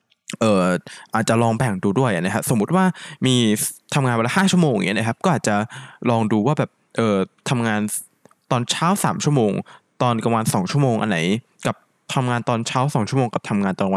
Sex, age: male, 20-39